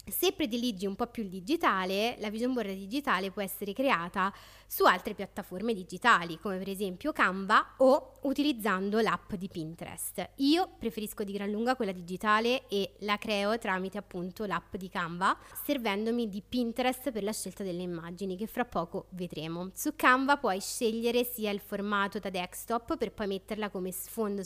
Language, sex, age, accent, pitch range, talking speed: Italian, female, 20-39, native, 195-240 Hz, 165 wpm